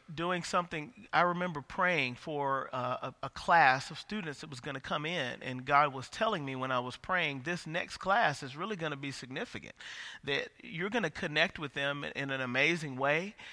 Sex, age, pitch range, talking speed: male, 40-59, 140-185 Hz, 215 wpm